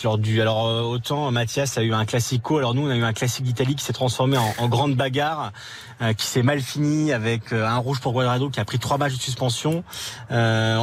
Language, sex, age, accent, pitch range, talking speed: French, male, 20-39, French, 120-145 Hz, 225 wpm